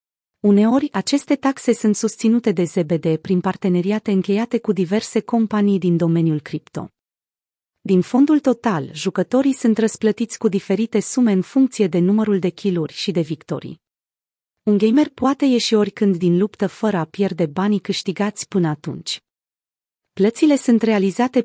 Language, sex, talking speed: Romanian, female, 145 wpm